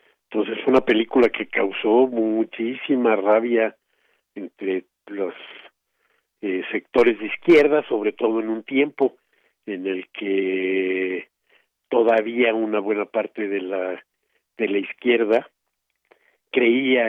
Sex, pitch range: male, 100-130 Hz